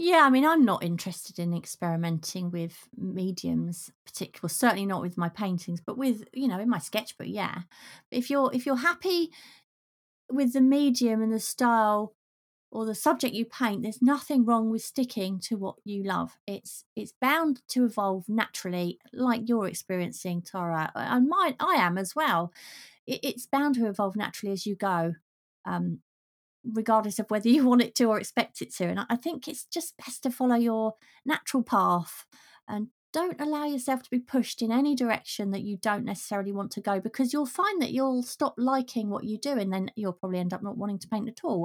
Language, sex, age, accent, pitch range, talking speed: English, female, 30-49, British, 195-260 Hz, 195 wpm